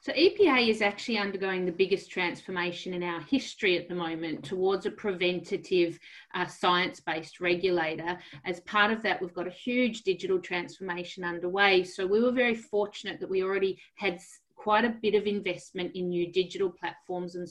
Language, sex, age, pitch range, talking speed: English, female, 40-59, 180-220 Hz, 170 wpm